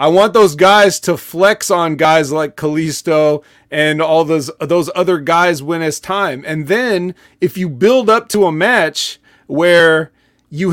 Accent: American